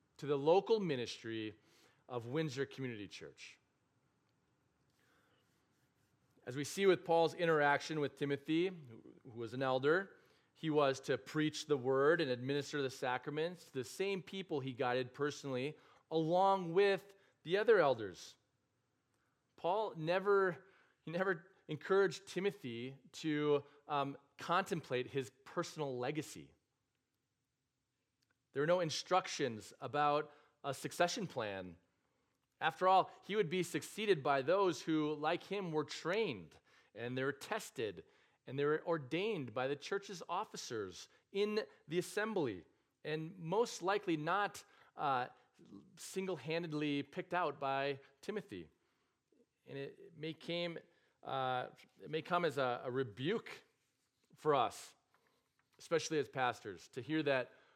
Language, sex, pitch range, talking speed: English, male, 135-175 Hz, 120 wpm